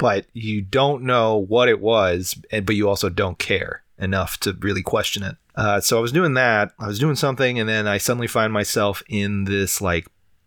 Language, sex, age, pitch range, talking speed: English, male, 30-49, 95-120 Hz, 205 wpm